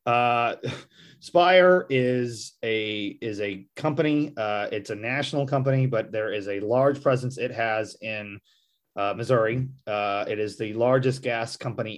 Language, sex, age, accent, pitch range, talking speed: English, male, 30-49, American, 105-130 Hz, 150 wpm